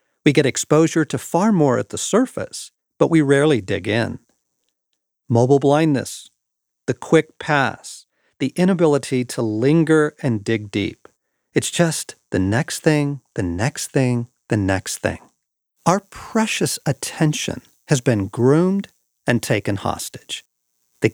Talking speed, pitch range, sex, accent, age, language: 135 wpm, 120-160 Hz, male, American, 50-69, English